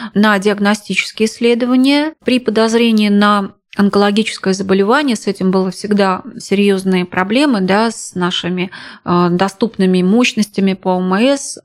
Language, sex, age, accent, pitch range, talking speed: Russian, female, 30-49, native, 190-225 Hz, 110 wpm